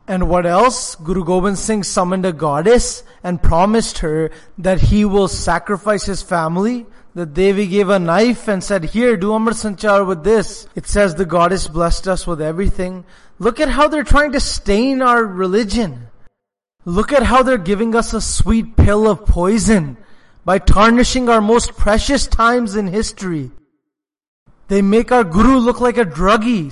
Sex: male